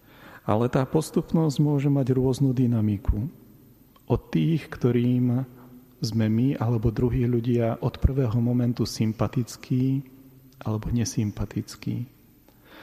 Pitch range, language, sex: 110-130 Hz, Slovak, male